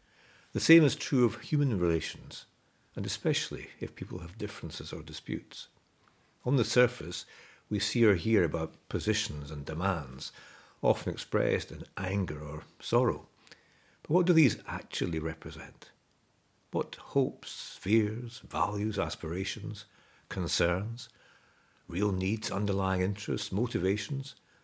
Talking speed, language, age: 120 wpm, English, 60-79